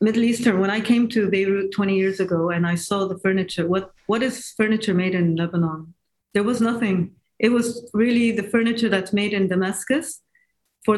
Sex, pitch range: female, 190-230 Hz